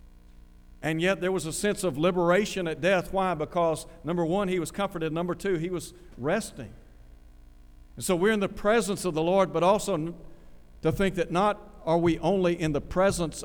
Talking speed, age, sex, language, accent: 190 wpm, 60-79, male, English, American